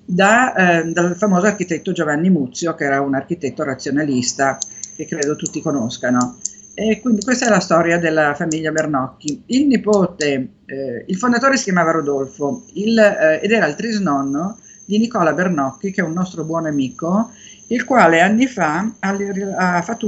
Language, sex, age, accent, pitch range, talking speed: Italian, female, 50-69, native, 155-210 Hz, 160 wpm